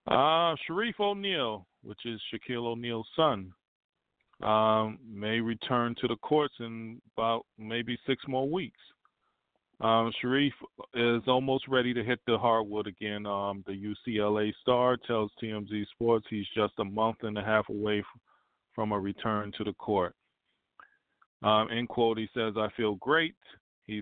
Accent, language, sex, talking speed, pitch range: American, English, male, 150 wpm, 105-115 Hz